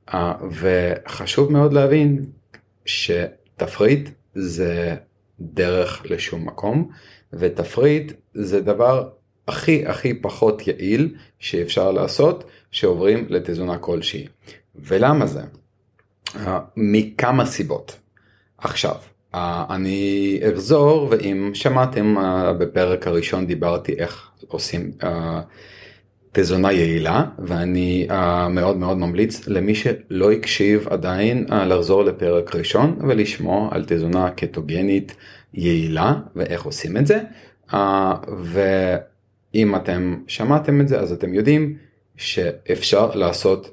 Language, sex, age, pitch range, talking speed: Hebrew, male, 30-49, 90-115 Hz, 100 wpm